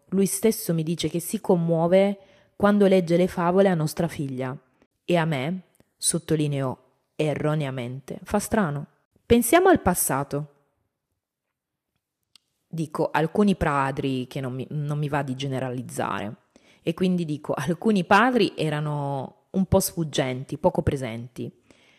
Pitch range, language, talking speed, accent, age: 140-180 Hz, Italian, 125 wpm, native, 20-39